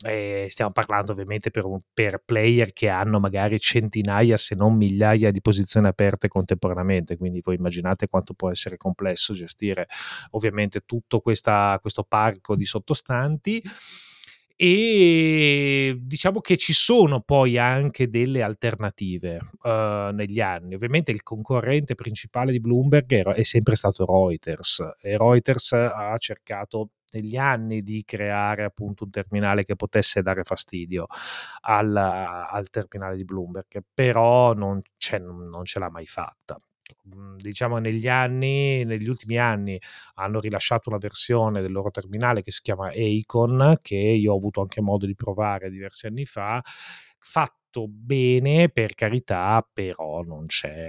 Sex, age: male, 30-49